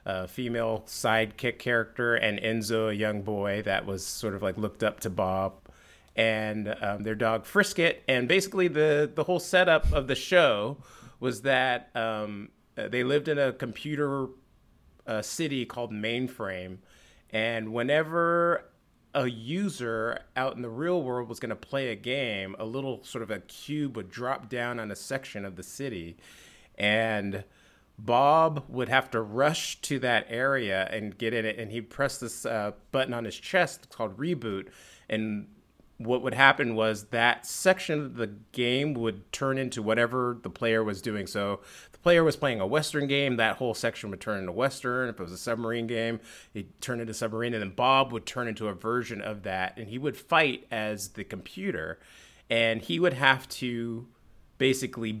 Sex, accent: male, American